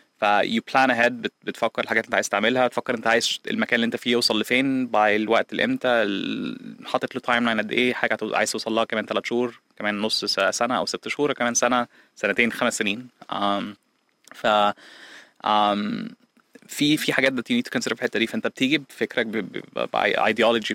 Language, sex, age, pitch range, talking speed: Arabic, male, 20-39, 105-125 Hz, 180 wpm